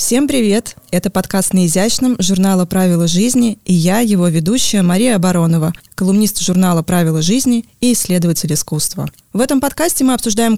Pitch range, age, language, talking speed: 175-225 Hz, 20-39, Russian, 155 wpm